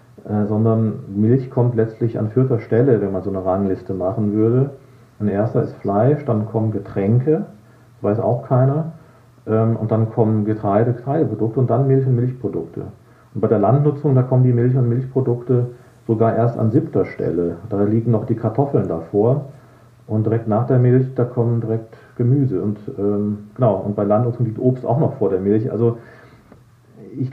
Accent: German